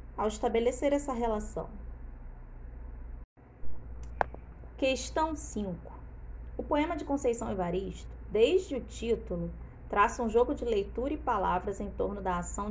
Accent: Brazilian